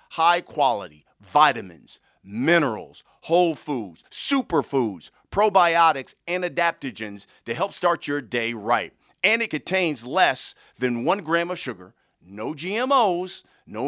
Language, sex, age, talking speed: English, male, 50-69, 120 wpm